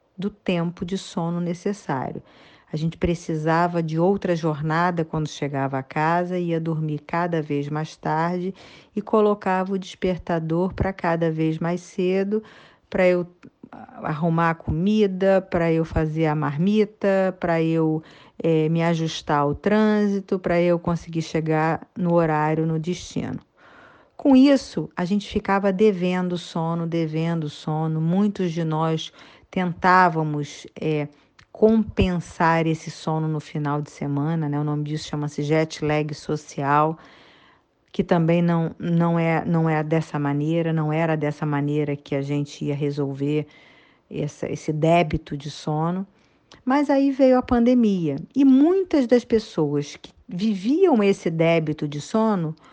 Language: Portuguese